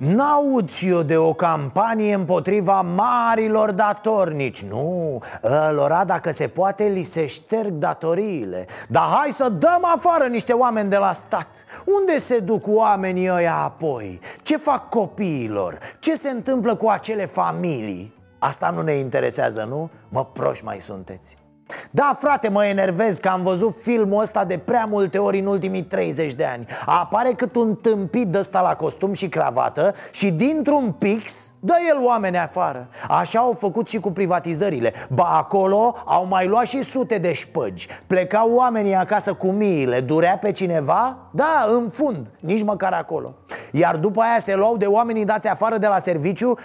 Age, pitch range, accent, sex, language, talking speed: 30-49, 175-230 Hz, native, male, Romanian, 165 wpm